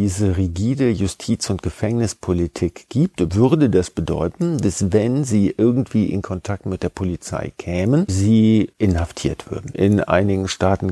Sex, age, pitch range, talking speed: male, 50-69, 90-110 Hz, 135 wpm